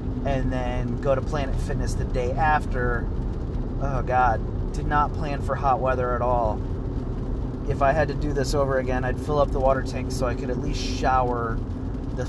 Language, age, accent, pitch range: English, 30-49, American, 90-125 Hz